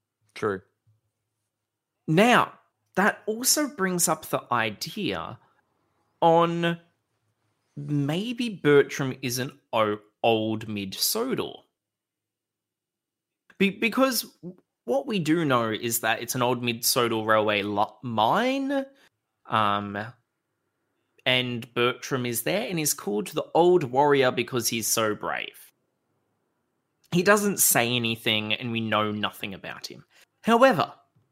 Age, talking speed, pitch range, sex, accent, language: 20-39, 105 wpm, 115-165 Hz, male, Australian, English